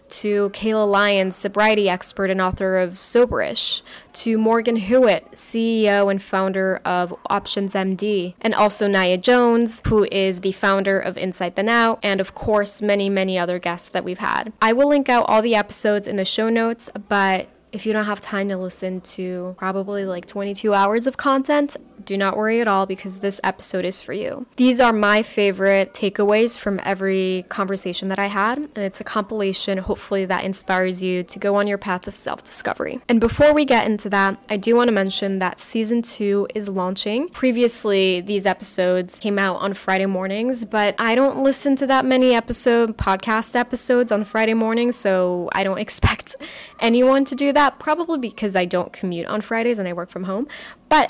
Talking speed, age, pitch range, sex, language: 190 wpm, 10-29, 190-230 Hz, female, English